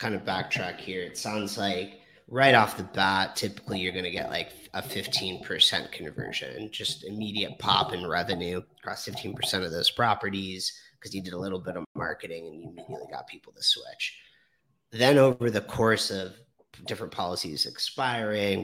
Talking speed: 170 wpm